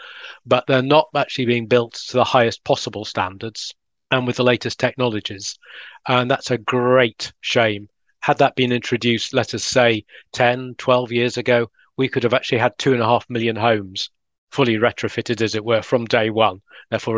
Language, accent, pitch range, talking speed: English, British, 115-130 Hz, 180 wpm